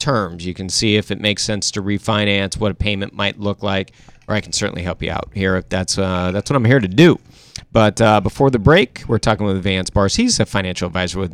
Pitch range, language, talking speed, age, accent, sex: 95-115 Hz, English, 255 wpm, 40-59, American, male